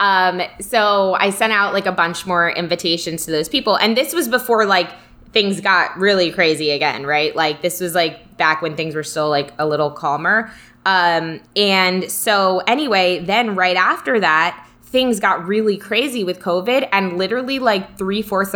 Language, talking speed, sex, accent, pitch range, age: English, 180 wpm, female, American, 170-220 Hz, 20-39